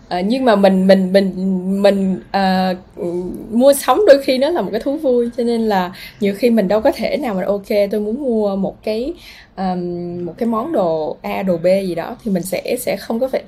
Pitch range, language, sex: 185-240 Hz, Vietnamese, female